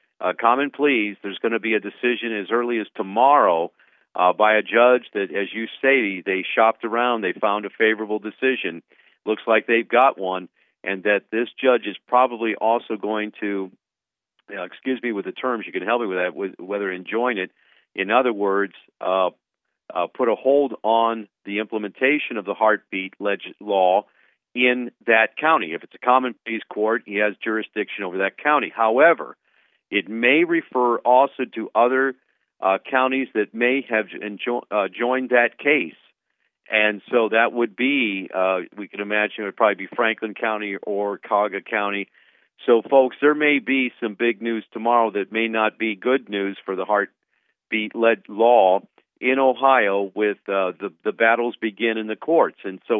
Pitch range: 105-125 Hz